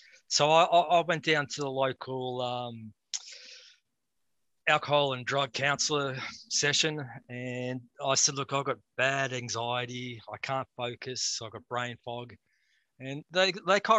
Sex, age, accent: male, 20-39, Australian